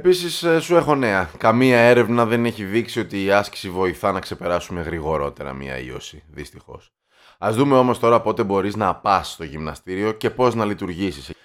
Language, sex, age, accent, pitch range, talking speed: Greek, male, 20-39, native, 90-120 Hz, 175 wpm